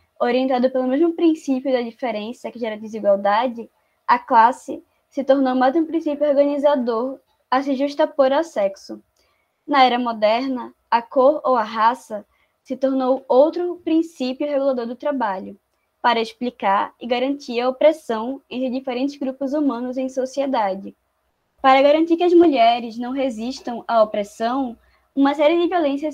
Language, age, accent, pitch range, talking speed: Portuguese, 10-29, Brazilian, 245-295 Hz, 140 wpm